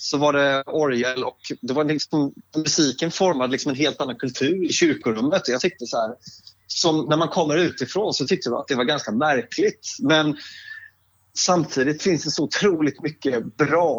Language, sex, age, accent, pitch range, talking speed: Swedish, male, 30-49, native, 125-165 Hz, 175 wpm